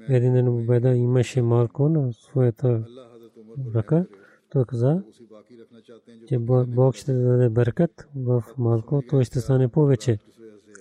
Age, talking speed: 40-59, 110 wpm